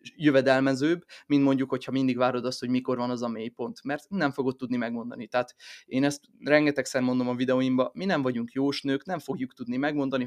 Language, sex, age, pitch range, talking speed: Hungarian, male, 20-39, 125-145 Hz, 195 wpm